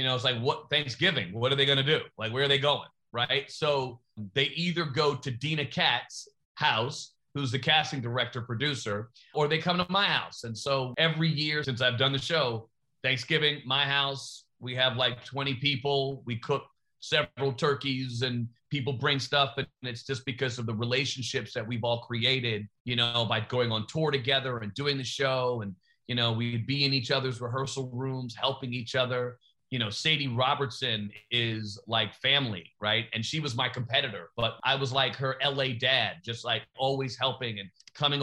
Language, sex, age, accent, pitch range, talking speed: English, male, 40-59, American, 120-140 Hz, 195 wpm